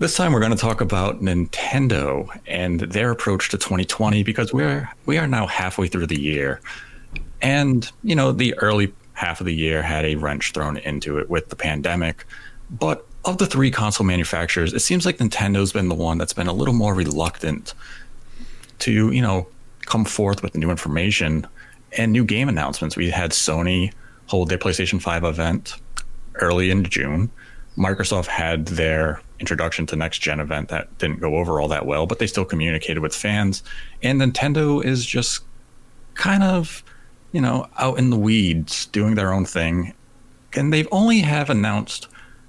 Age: 30-49